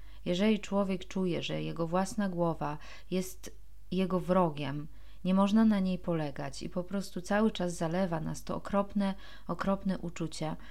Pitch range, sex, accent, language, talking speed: 165-215 Hz, female, native, Polish, 145 wpm